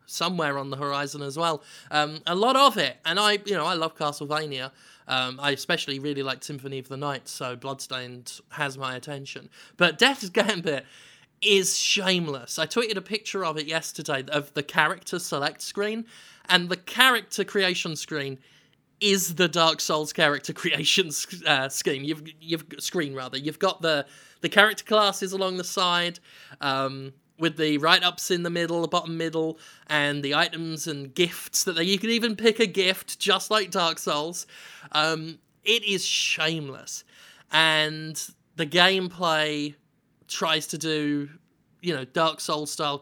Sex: male